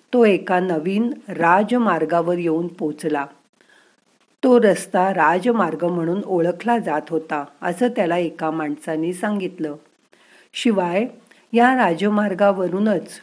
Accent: native